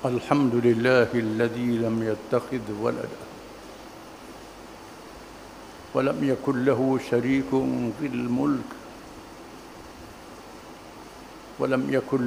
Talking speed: 70 wpm